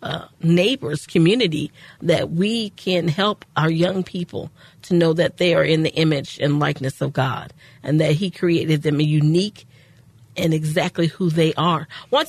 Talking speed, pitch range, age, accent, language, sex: 170 wpm, 155-180 Hz, 40-59, American, English, female